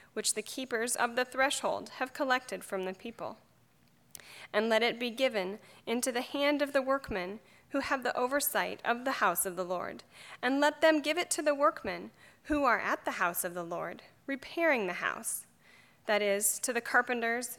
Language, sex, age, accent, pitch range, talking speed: English, female, 30-49, American, 205-275 Hz, 190 wpm